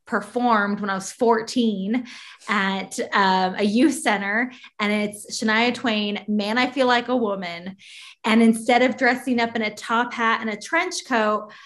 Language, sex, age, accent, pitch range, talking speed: English, female, 20-39, American, 205-245 Hz, 170 wpm